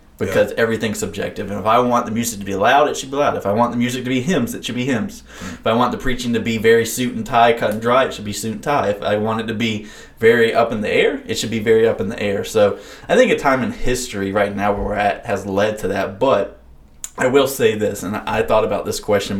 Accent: American